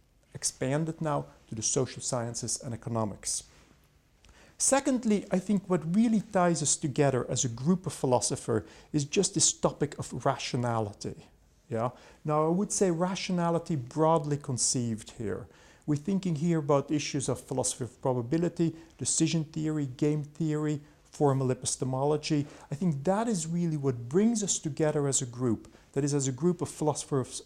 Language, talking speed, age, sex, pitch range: English, 150 wpm, 40-59, male, 130-175 Hz